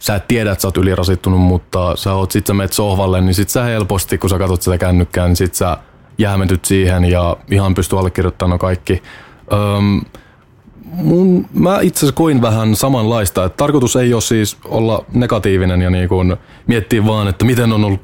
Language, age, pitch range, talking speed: Finnish, 20-39, 95-120 Hz, 180 wpm